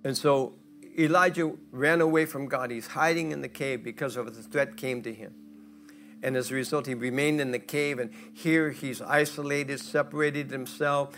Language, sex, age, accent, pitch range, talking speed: English, male, 60-79, American, 130-185 Hz, 185 wpm